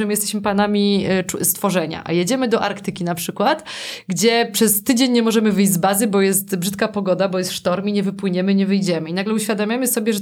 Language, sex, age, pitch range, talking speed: Polish, female, 20-39, 180-215 Hz, 205 wpm